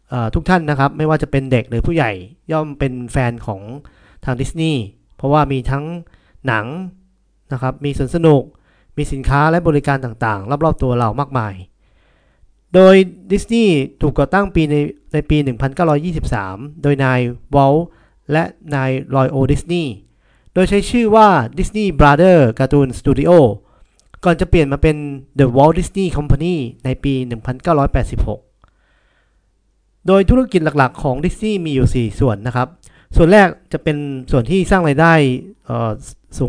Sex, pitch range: male, 125-165 Hz